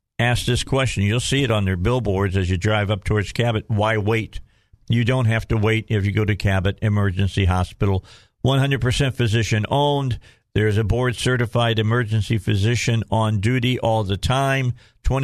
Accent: American